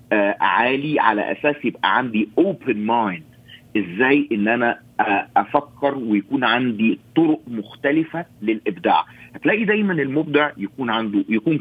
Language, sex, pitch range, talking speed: Arabic, male, 115-160 Hz, 115 wpm